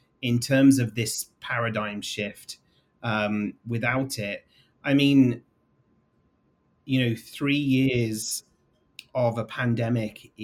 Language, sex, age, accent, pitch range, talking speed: English, male, 30-49, British, 105-130 Hz, 105 wpm